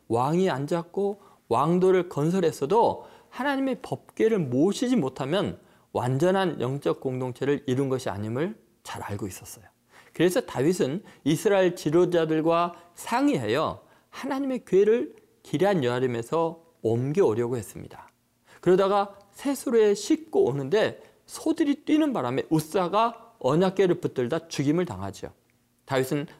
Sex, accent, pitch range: male, native, 135-210 Hz